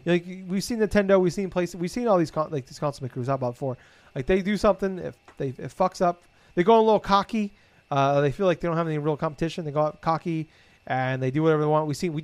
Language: English